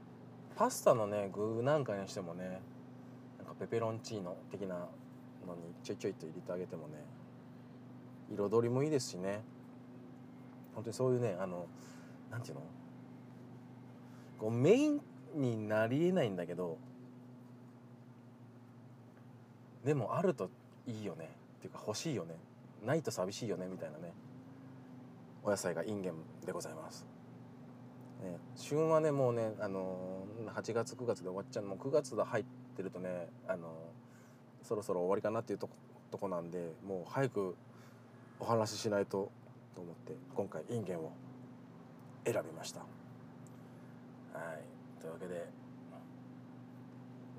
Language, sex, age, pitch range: Japanese, male, 40-59, 105-125 Hz